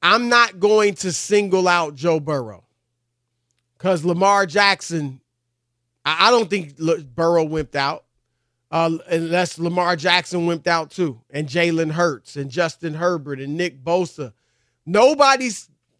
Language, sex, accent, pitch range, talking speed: English, male, American, 140-205 Hz, 130 wpm